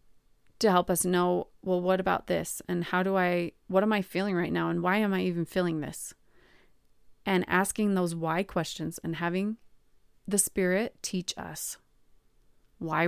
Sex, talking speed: female, 170 wpm